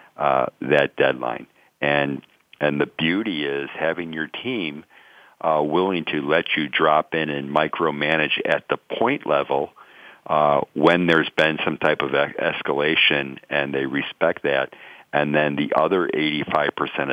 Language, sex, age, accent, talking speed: English, male, 50-69, American, 145 wpm